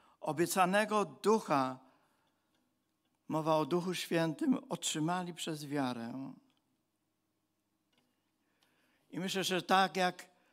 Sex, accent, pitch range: male, native, 160-225 Hz